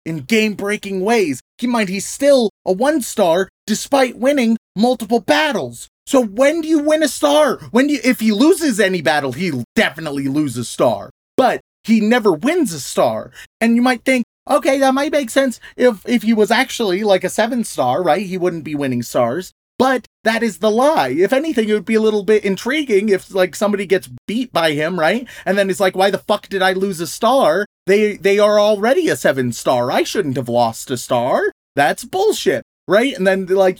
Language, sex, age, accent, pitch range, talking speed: English, male, 30-49, American, 165-240 Hz, 205 wpm